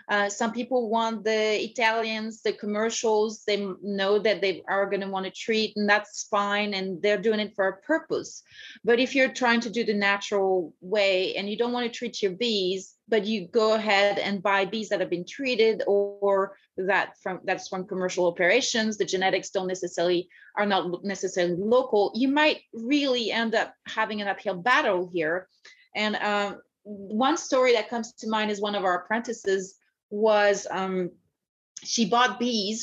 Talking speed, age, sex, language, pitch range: 185 wpm, 30-49, female, English, 195-225 Hz